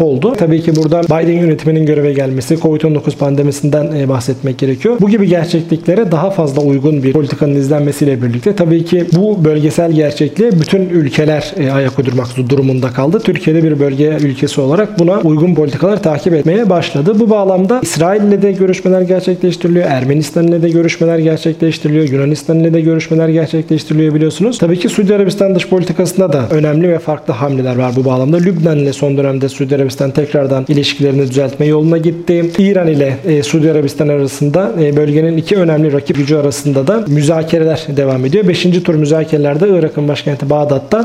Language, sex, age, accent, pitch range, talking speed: Turkish, male, 40-59, native, 145-180 Hz, 160 wpm